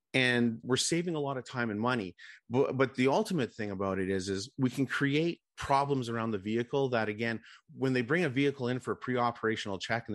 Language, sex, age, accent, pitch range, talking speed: English, male, 30-49, American, 110-140 Hz, 225 wpm